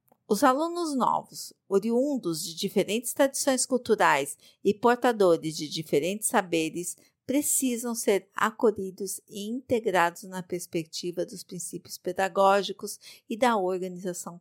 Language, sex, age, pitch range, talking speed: Portuguese, female, 50-69, 165-215 Hz, 110 wpm